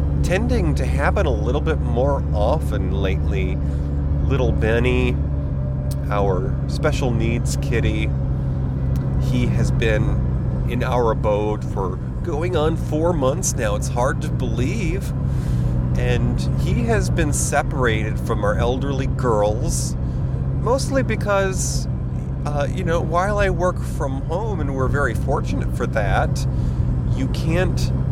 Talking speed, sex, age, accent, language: 125 wpm, male, 30-49, American, English